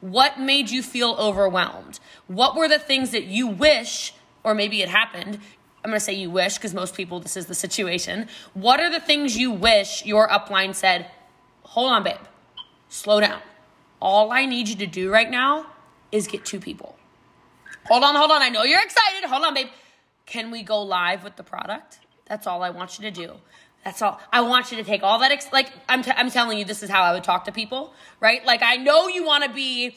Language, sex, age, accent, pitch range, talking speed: English, female, 20-39, American, 210-290 Hz, 225 wpm